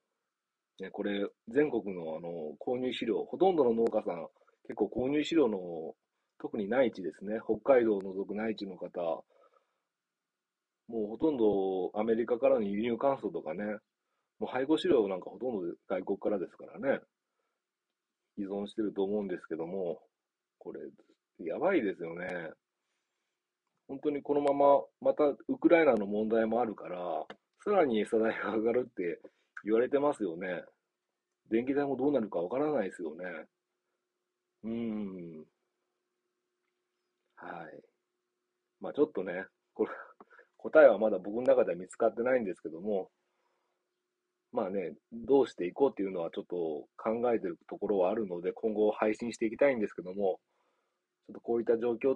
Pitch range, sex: 105-150 Hz, male